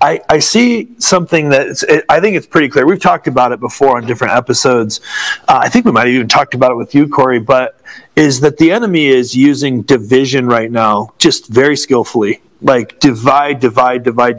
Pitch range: 130-170 Hz